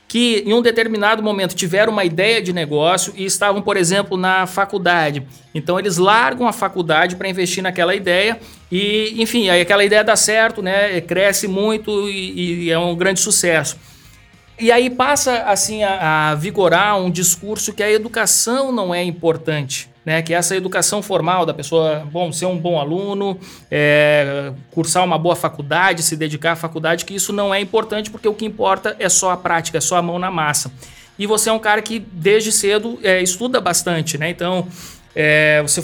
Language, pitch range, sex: Portuguese, 165-210 Hz, male